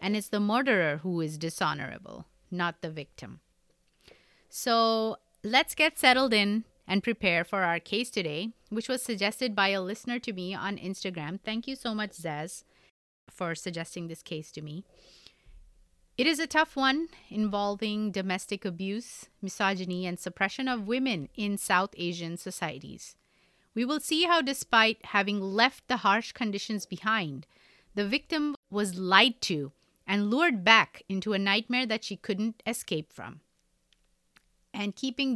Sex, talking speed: female, 150 wpm